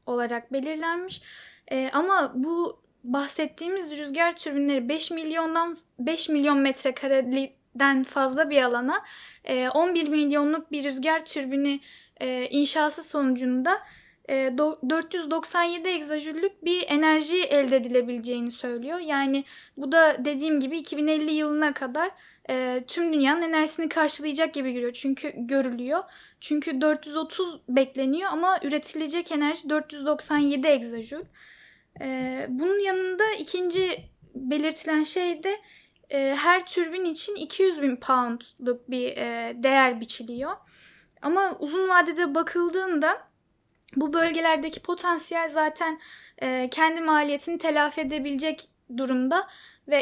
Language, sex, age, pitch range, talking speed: Turkish, female, 10-29, 270-330 Hz, 110 wpm